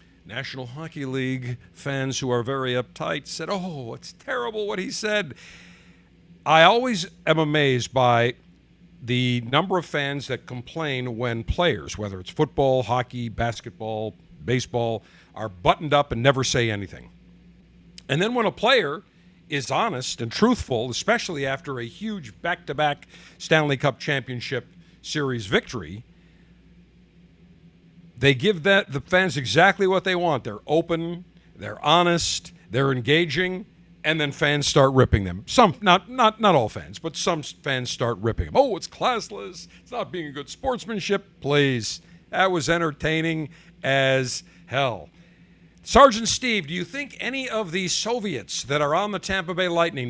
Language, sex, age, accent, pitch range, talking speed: English, male, 50-69, American, 125-175 Hz, 150 wpm